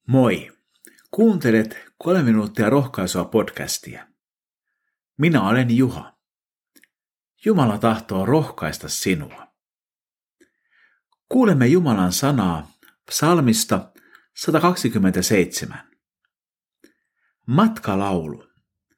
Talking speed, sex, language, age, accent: 60 wpm, male, Finnish, 50-69, native